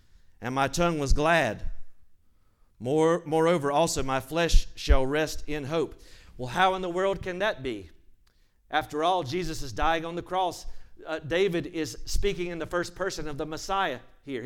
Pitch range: 145-200 Hz